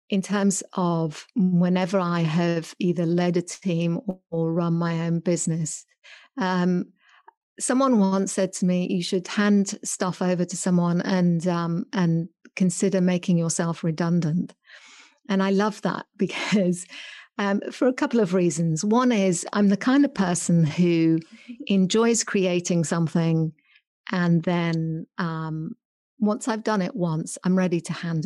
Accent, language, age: British, English, 50-69